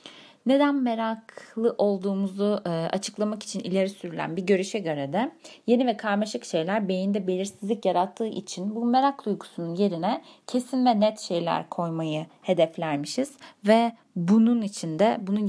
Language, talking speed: Turkish, 130 wpm